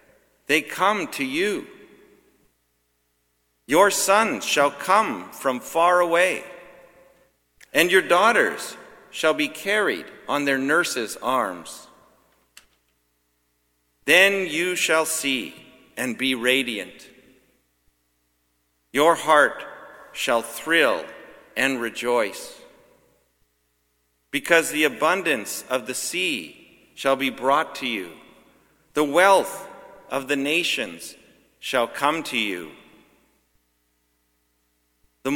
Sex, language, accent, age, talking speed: male, English, American, 50-69, 95 wpm